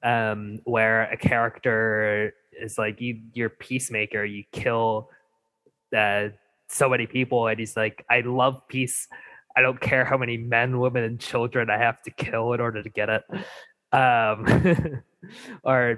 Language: English